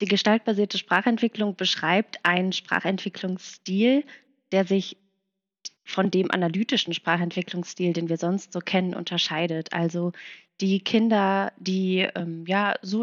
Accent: German